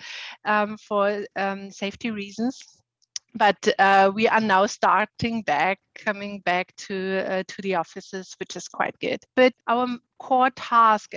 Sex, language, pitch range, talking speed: female, English, 200-235 Hz, 145 wpm